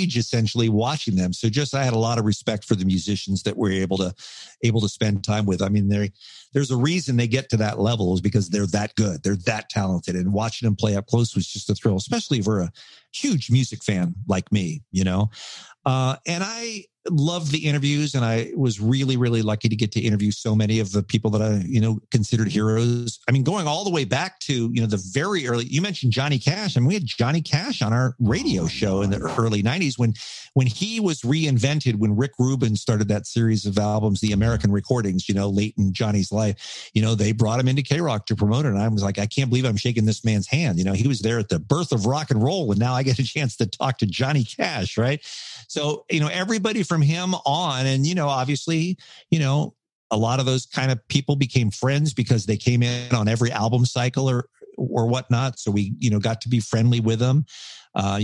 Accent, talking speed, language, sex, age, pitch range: American, 235 wpm, English, male, 50-69, 105-135 Hz